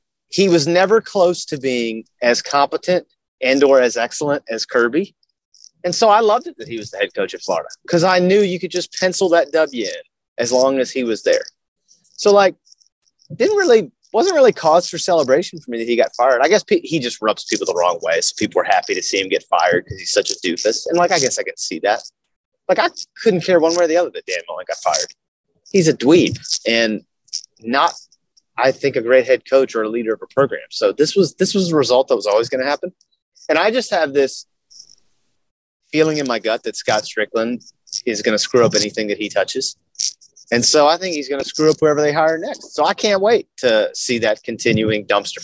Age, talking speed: 30-49, 235 wpm